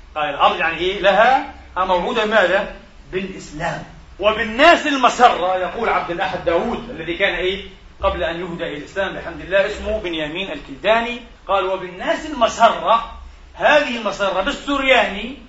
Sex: male